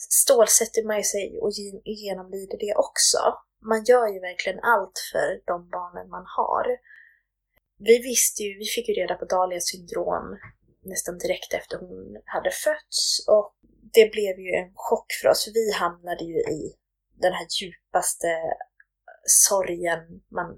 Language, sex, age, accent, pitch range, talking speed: Swedish, female, 20-39, native, 185-270 Hz, 150 wpm